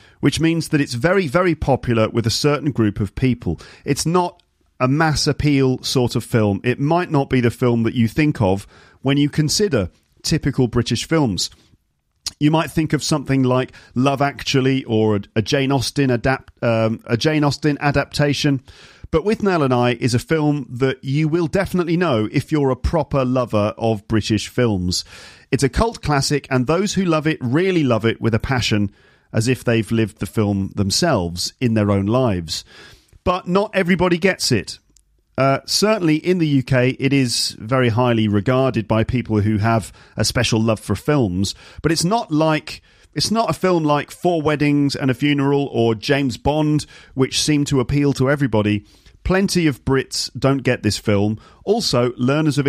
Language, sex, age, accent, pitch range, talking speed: English, male, 40-59, British, 110-150 Hz, 180 wpm